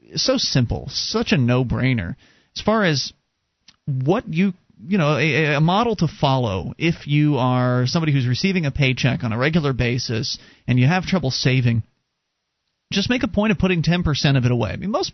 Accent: American